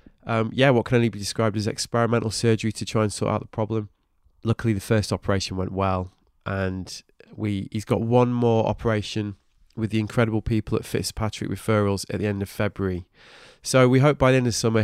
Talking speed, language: 200 wpm, English